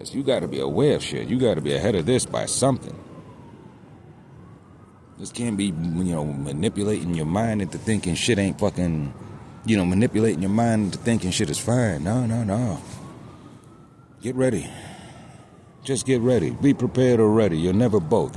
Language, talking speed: English, 165 wpm